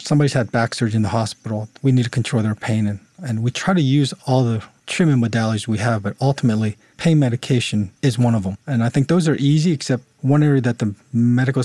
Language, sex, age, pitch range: English, male, 40-59, 110-135 Hz